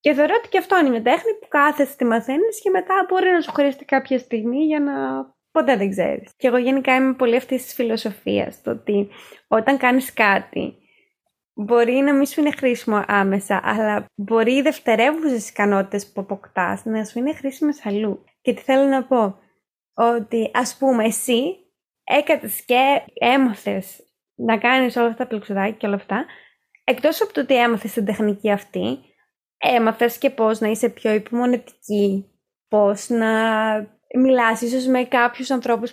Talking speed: 170 wpm